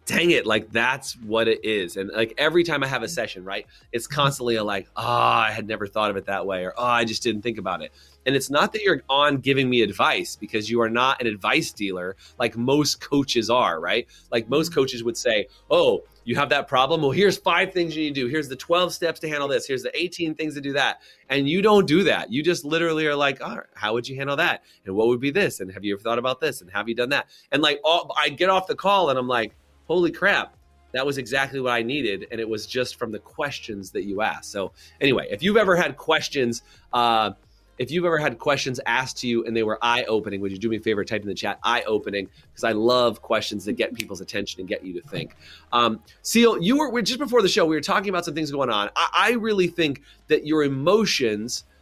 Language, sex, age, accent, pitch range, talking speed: English, male, 30-49, American, 110-155 Hz, 260 wpm